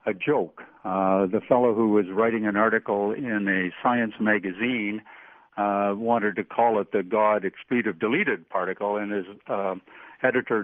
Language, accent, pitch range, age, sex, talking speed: English, American, 105-135 Hz, 60-79, male, 160 wpm